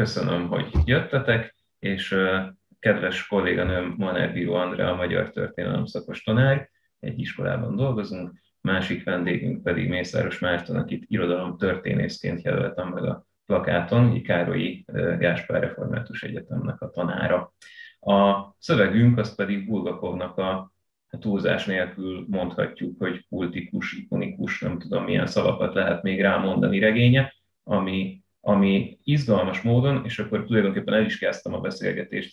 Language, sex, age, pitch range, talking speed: Hungarian, male, 30-49, 95-120 Hz, 125 wpm